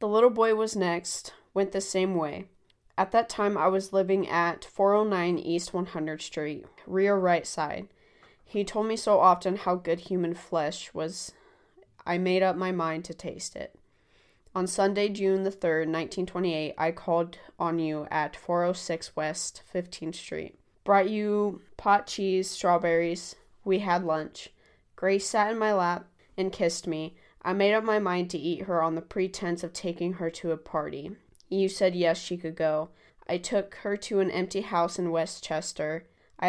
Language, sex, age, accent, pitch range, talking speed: English, female, 20-39, American, 170-195 Hz, 175 wpm